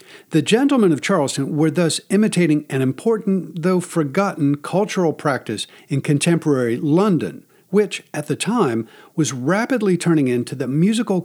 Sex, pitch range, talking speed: male, 140-185 Hz, 140 wpm